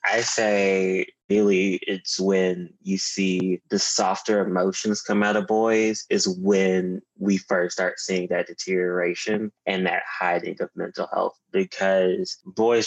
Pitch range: 95-110 Hz